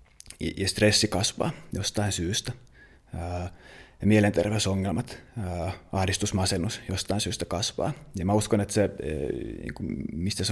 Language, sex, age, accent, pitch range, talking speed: Finnish, male, 30-49, native, 95-105 Hz, 110 wpm